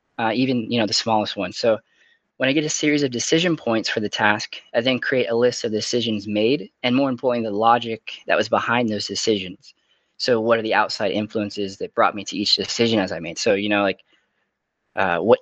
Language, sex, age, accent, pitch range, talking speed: English, male, 20-39, American, 105-125 Hz, 225 wpm